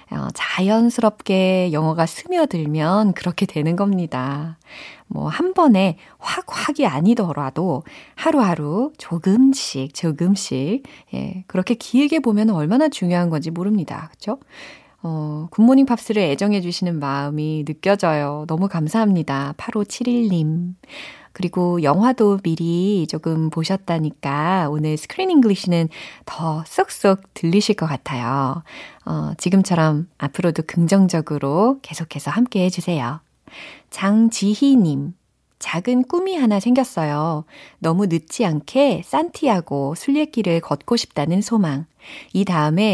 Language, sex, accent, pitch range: Korean, female, native, 160-230 Hz